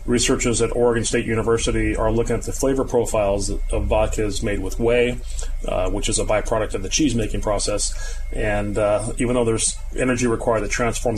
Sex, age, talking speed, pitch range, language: male, 30-49, 190 wpm, 100-120 Hz, English